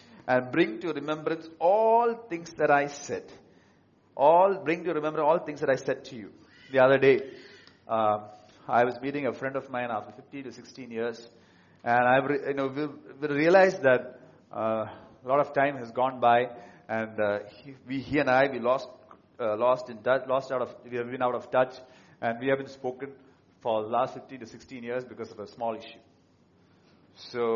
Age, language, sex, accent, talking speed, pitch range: 40-59, English, male, Indian, 195 wpm, 120-150 Hz